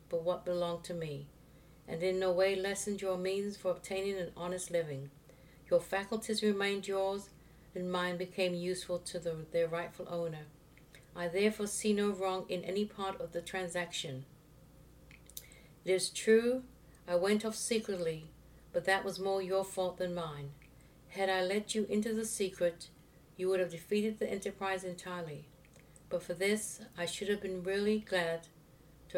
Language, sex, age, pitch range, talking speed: English, female, 60-79, 165-200 Hz, 160 wpm